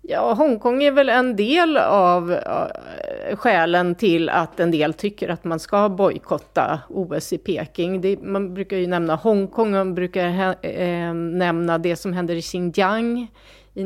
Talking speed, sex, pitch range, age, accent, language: 155 wpm, female, 170-200 Hz, 30-49, native, Swedish